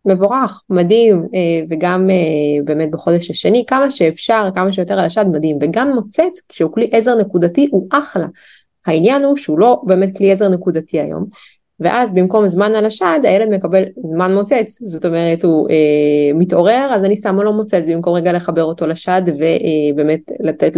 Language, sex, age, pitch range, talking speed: Hebrew, female, 20-39, 165-220 Hz, 160 wpm